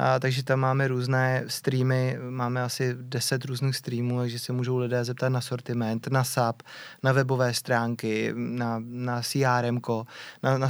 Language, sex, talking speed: Czech, male, 155 wpm